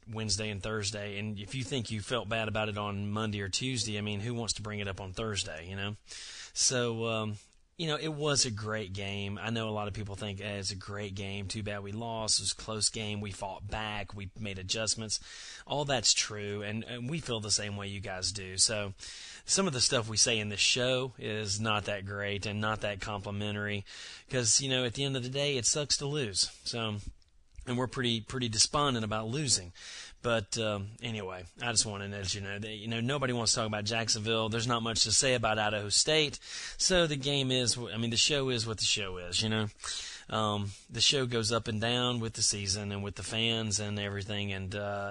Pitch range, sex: 100-120 Hz, male